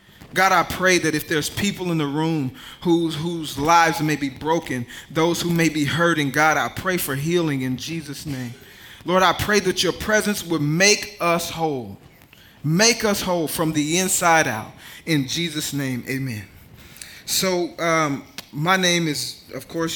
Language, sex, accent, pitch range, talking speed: English, male, American, 140-180 Hz, 170 wpm